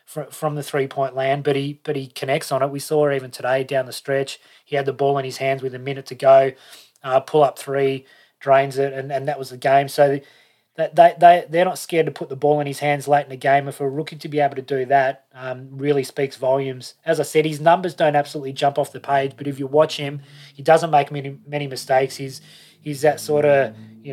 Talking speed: 260 wpm